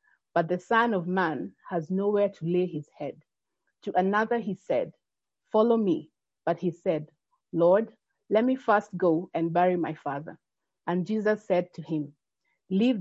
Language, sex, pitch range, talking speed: English, female, 165-205 Hz, 160 wpm